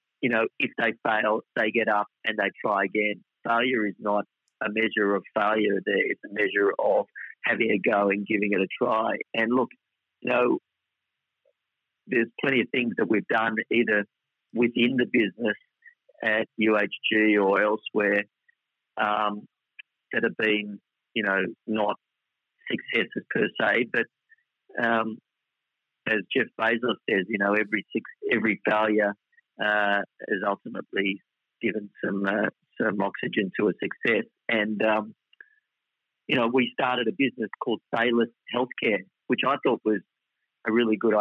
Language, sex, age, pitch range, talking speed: English, male, 50-69, 105-115 Hz, 145 wpm